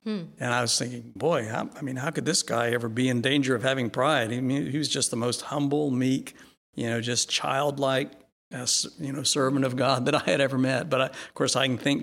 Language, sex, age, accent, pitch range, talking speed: English, male, 60-79, American, 120-140 Hz, 250 wpm